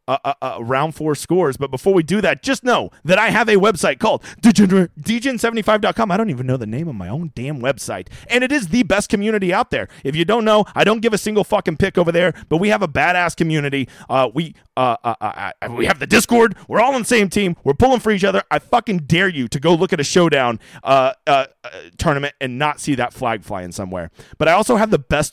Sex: male